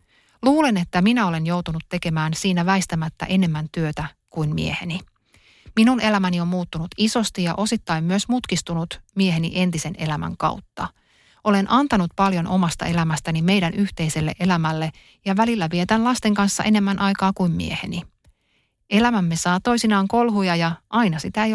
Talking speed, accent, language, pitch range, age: 140 wpm, native, Finnish, 165-200 Hz, 30-49